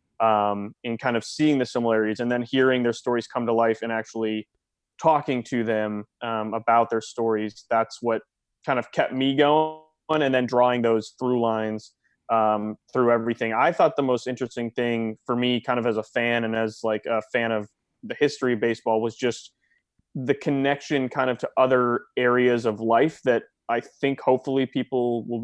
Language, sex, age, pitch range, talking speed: English, male, 20-39, 115-130 Hz, 190 wpm